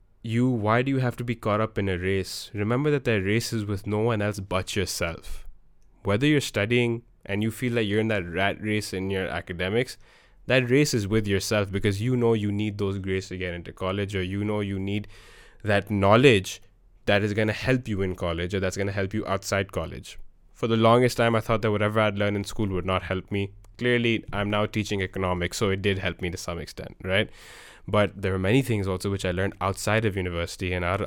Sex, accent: male, Indian